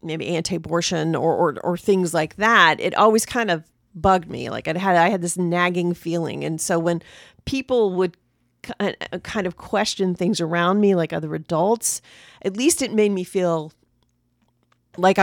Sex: female